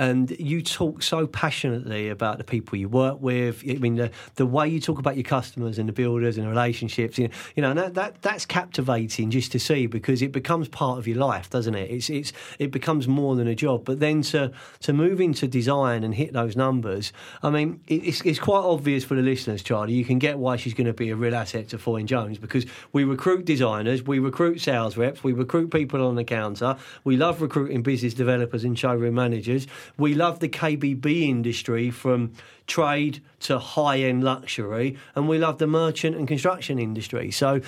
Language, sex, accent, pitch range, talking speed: English, male, British, 120-150 Hz, 210 wpm